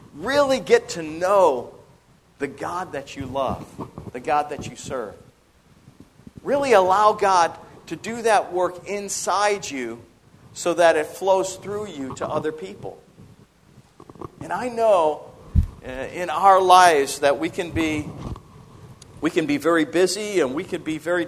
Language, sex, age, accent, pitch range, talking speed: English, male, 50-69, American, 150-215 Hz, 145 wpm